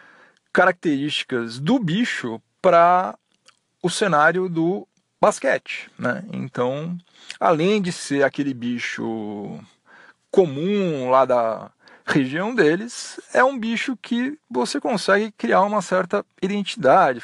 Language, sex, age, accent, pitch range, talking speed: Portuguese, male, 40-59, Brazilian, 150-210 Hz, 105 wpm